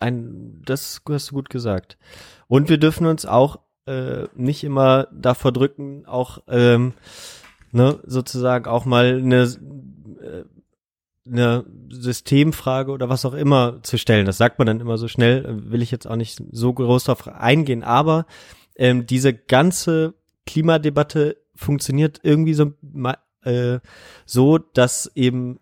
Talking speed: 140 wpm